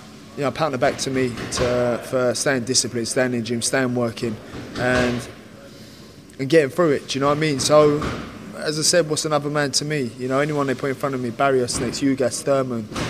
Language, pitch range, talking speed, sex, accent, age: English, 125-150 Hz, 230 wpm, male, British, 20-39